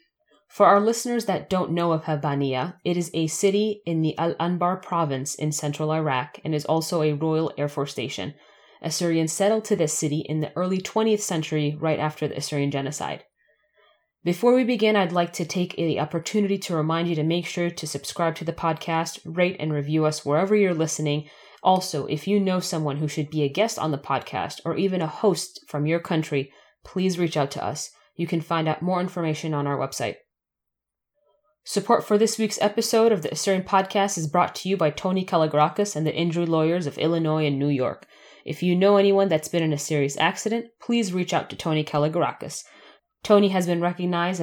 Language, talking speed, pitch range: English, 200 wpm, 150-190 Hz